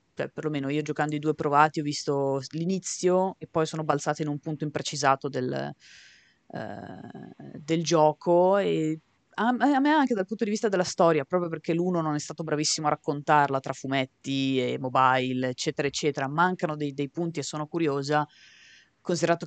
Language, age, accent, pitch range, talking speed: Italian, 30-49, native, 140-170 Hz, 175 wpm